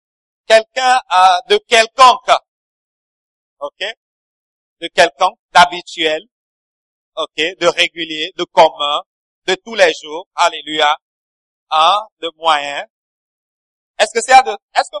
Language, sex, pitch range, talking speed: English, male, 185-250 Hz, 110 wpm